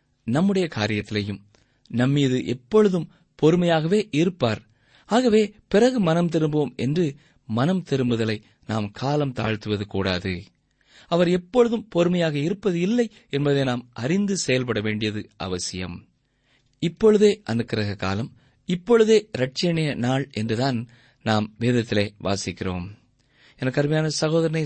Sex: male